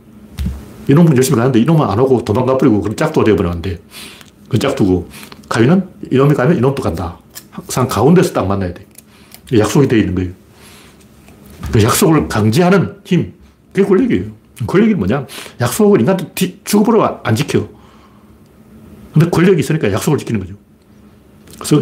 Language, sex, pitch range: Korean, male, 105-165 Hz